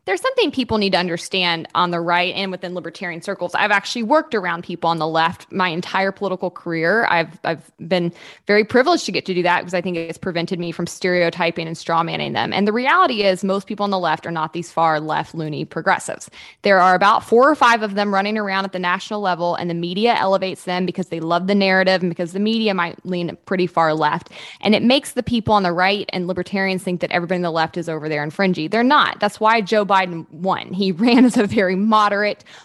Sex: female